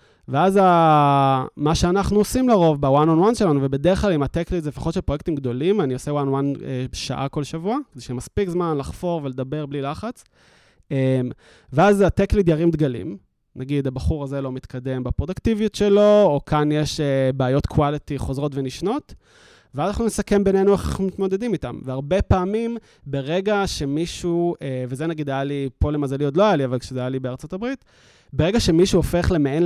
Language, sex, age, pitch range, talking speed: Hebrew, male, 20-39, 135-185 Hz, 170 wpm